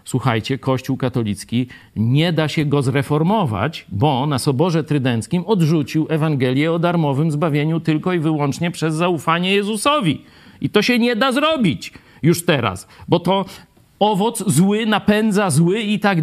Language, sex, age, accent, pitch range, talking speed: Polish, male, 50-69, native, 125-180 Hz, 145 wpm